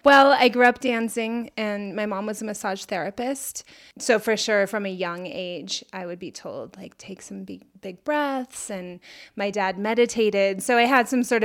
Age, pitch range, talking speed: 20-39, 195-235 Hz, 200 wpm